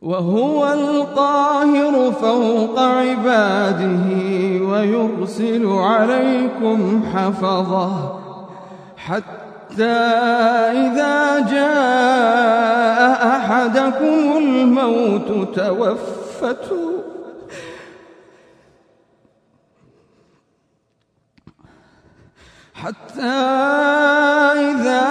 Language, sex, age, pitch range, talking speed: Arabic, male, 30-49, 195-260 Hz, 35 wpm